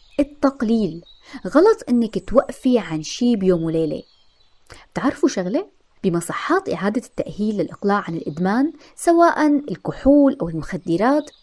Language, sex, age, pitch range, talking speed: Arabic, female, 20-39, 175-285 Hz, 105 wpm